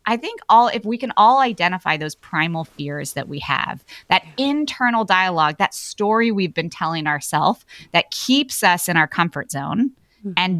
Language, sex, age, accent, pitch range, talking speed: English, female, 20-39, American, 160-220 Hz, 175 wpm